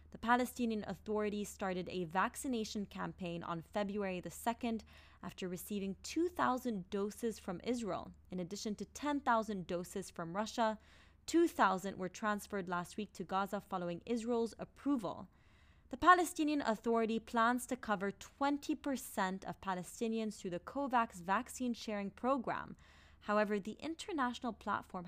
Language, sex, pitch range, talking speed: English, female, 195-245 Hz, 120 wpm